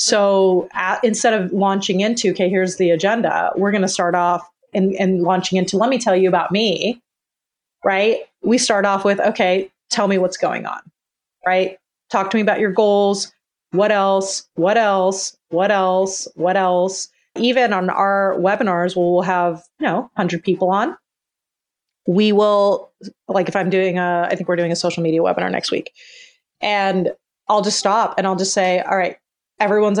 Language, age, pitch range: English, 30-49, 180-210 Hz